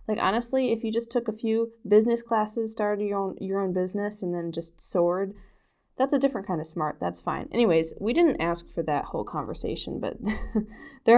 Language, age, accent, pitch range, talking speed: English, 10-29, American, 180-230 Hz, 205 wpm